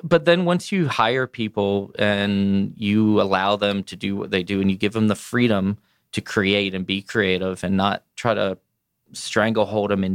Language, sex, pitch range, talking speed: English, male, 95-105 Hz, 195 wpm